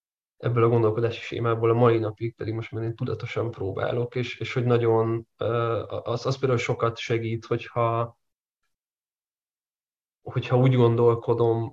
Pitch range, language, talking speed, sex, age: 110-120 Hz, Hungarian, 135 wpm, male, 20-39